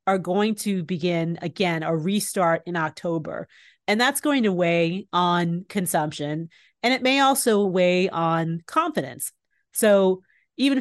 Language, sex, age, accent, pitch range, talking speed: English, female, 30-49, American, 170-220 Hz, 140 wpm